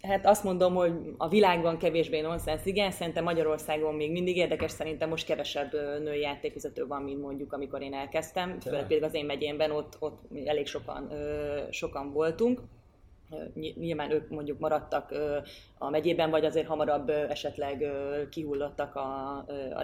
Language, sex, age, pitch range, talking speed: Hungarian, female, 20-39, 145-170 Hz, 150 wpm